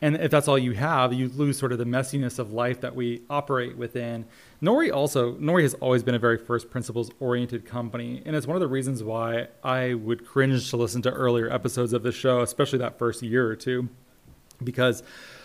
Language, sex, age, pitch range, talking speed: English, male, 30-49, 120-135 Hz, 210 wpm